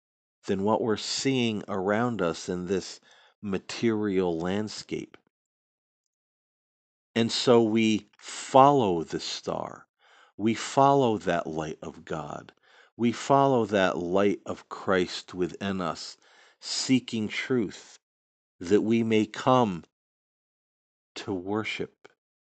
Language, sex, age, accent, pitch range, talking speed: English, male, 50-69, American, 80-110 Hz, 100 wpm